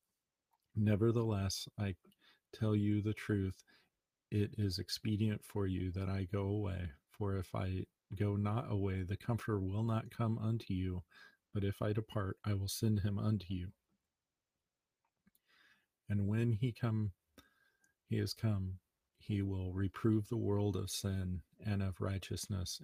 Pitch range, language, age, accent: 95-105 Hz, English, 40-59, American